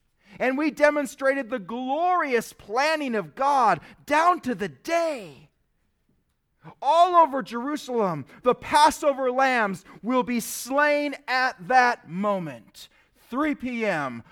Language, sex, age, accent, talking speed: English, male, 40-59, American, 110 wpm